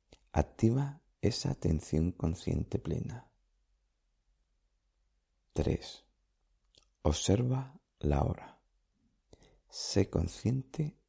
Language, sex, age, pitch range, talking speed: Spanish, male, 50-69, 80-115 Hz, 60 wpm